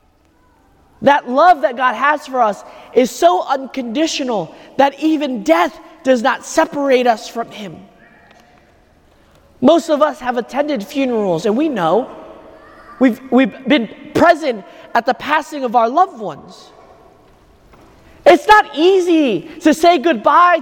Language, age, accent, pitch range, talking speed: English, 30-49, American, 270-335 Hz, 130 wpm